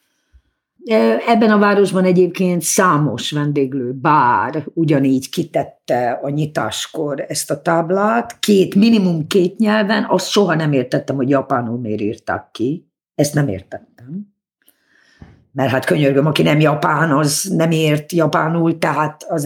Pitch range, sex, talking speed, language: 135-190 Hz, female, 130 wpm, Hungarian